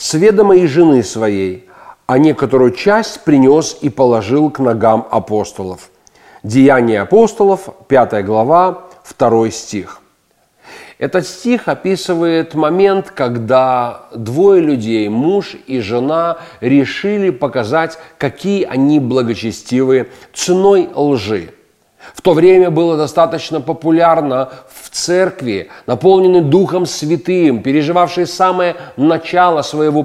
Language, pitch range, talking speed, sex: Russian, 130-180 Hz, 100 wpm, male